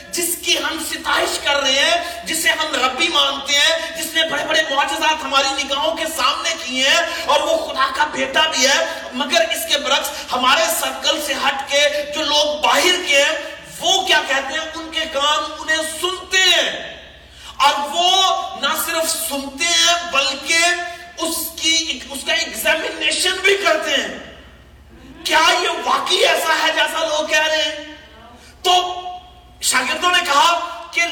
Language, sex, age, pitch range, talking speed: Urdu, male, 40-59, 275-330 Hz, 165 wpm